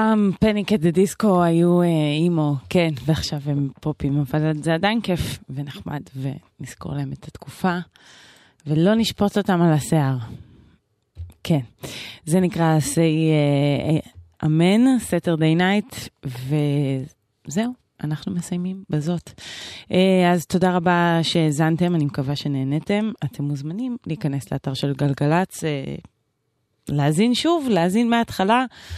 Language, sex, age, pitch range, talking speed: Hebrew, female, 20-39, 140-175 Hz, 110 wpm